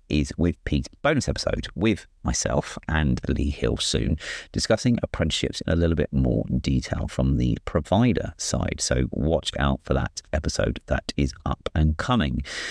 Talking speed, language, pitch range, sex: 160 wpm, English, 70-95 Hz, male